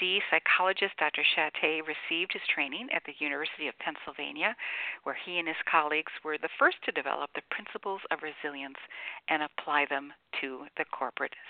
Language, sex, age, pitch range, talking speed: English, female, 50-69, 150-200 Hz, 160 wpm